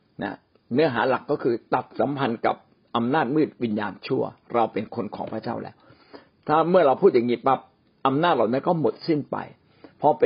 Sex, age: male, 60-79